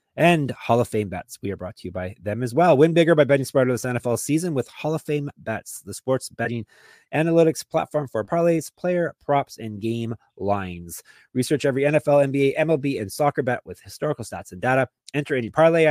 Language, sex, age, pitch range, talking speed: English, male, 30-49, 110-150 Hz, 210 wpm